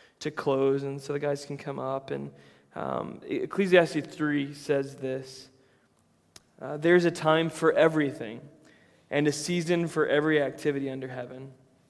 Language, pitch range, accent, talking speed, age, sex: English, 135-155 Hz, American, 140 wpm, 20-39, male